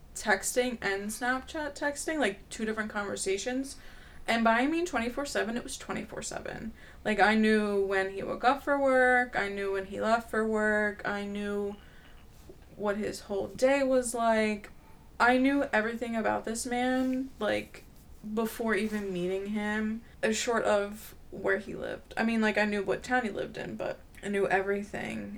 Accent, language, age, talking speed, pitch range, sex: American, English, 20-39, 175 wpm, 195-235 Hz, female